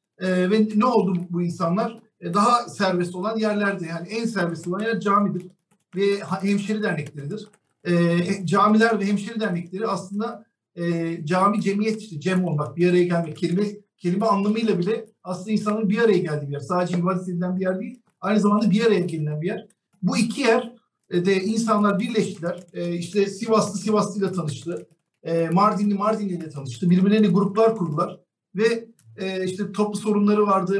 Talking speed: 165 wpm